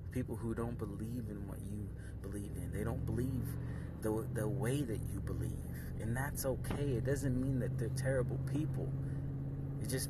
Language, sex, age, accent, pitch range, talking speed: English, male, 30-49, American, 85-130 Hz, 180 wpm